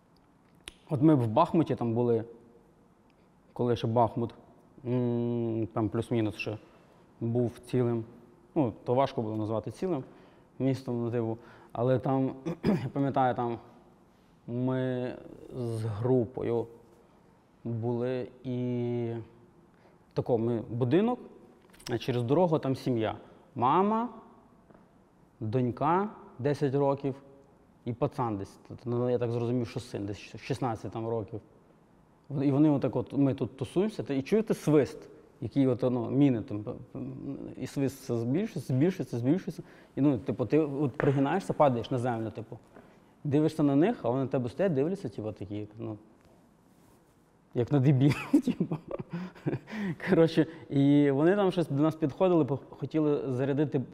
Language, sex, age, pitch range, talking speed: Russian, male, 20-39, 120-150 Hz, 125 wpm